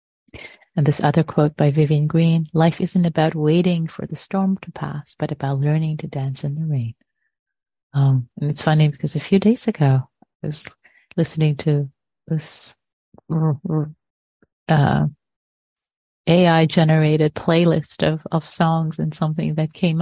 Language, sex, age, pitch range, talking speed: English, female, 30-49, 155-190 Hz, 145 wpm